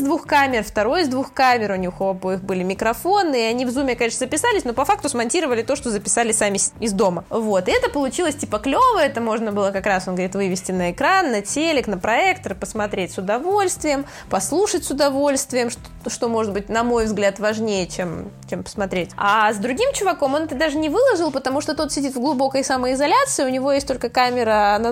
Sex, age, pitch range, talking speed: female, 20-39, 205-285 Hz, 205 wpm